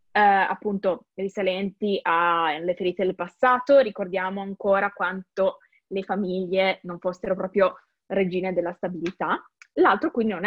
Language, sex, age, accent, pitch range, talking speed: Italian, female, 20-39, native, 200-250 Hz, 115 wpm